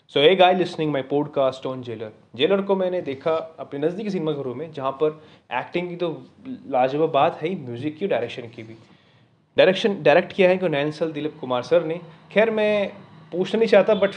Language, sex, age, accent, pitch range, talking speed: Hindi, male, 30-49, native, 135-180 Hz, 205 wpm